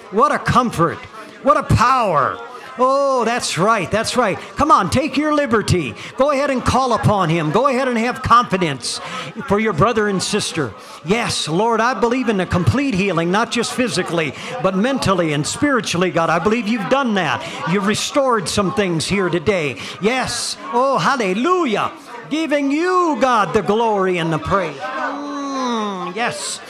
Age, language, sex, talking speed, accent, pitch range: 50-69, English, male, 160 wpm, American, 180-245 Hz